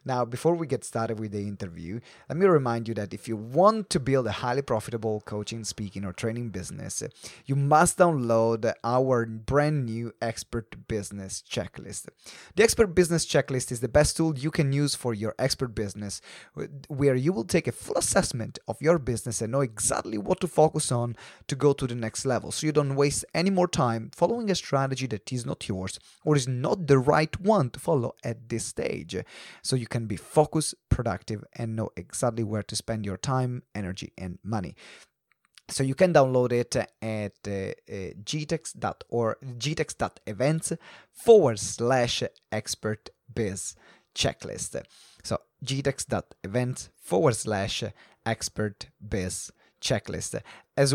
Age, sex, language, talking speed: 30-49, male, English, 160 wpm